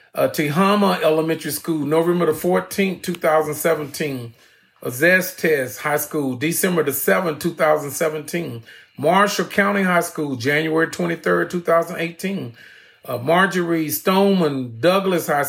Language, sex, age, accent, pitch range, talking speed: English, male, 40-59, American, 155-185 Hz, 130 wpm